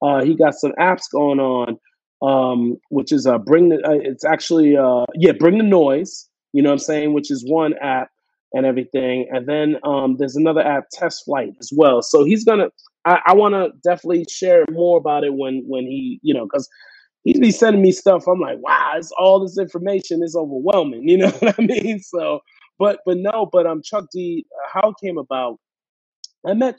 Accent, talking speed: American, 205 wpm